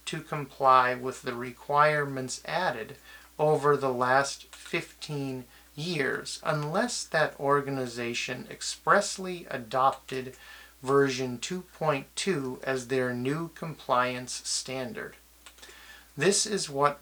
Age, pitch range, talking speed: 30-49, 130-155 Hz, 90 wpm